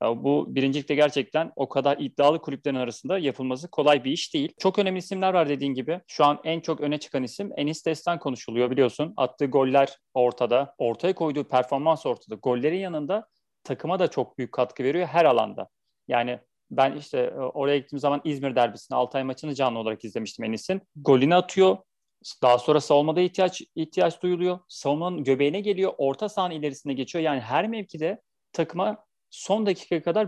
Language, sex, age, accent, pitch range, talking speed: Turkish, male, 40-59, native, 135-175 Hz, 165 wpm